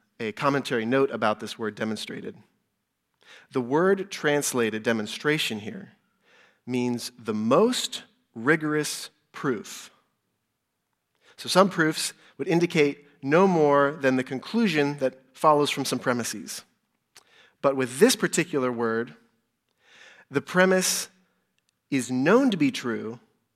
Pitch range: 120-150 Hz